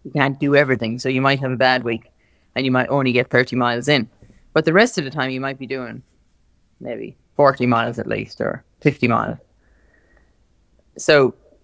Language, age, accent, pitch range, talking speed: English, 30-49, Irish, 120-160 Hz, 195 wpm